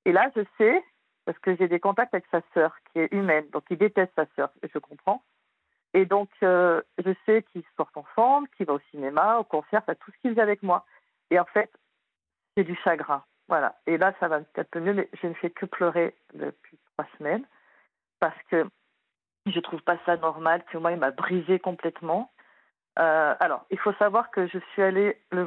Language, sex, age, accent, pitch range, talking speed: French, female, 50-69, French, 165-205 Hz, 215 wpm